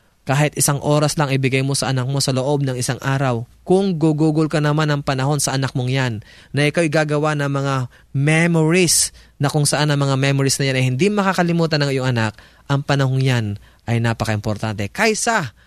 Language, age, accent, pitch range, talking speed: Filipino, 20-39, native, 130-165 Hz, 190 wpm